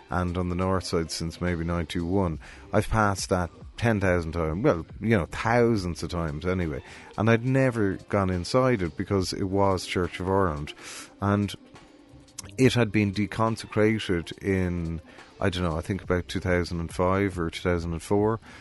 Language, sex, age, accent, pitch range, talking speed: English, male, 30-49, Irish, 85-100 Hz, 150 wpm